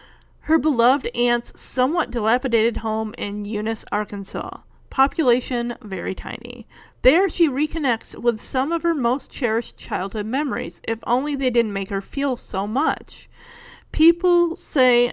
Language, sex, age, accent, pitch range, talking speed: English, female, 40-59, American, 220-280 Hz, 135 wpm